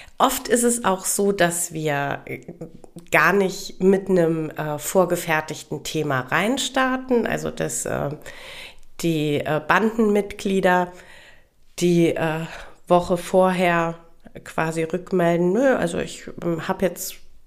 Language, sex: German, female